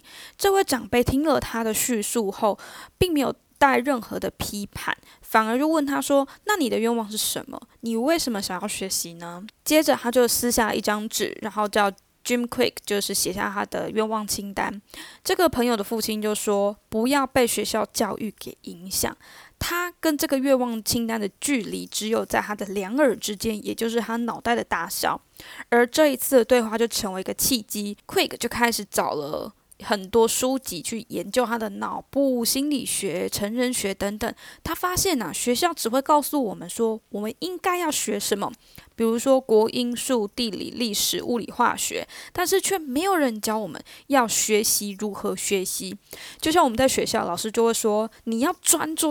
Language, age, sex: Chinese, 10-29, female